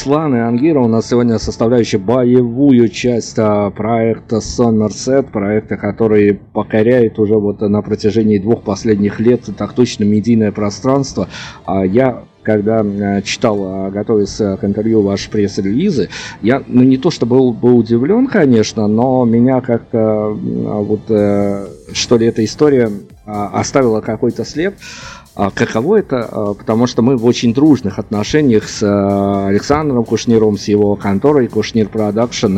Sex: male